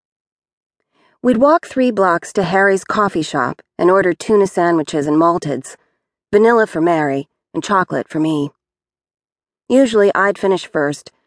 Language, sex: English, female